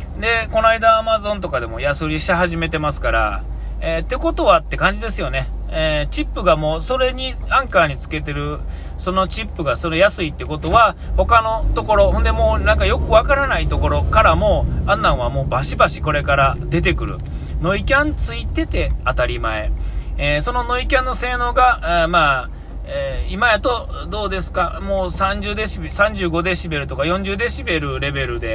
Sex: male